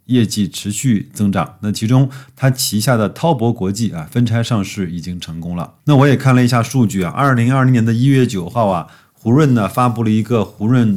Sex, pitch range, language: male, 95-125 Hz, Chinese